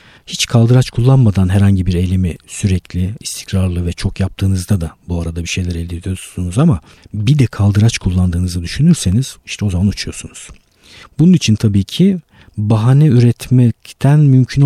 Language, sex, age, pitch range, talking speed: Turkish, male, 50-69, 95-125 Hz, 145 wpm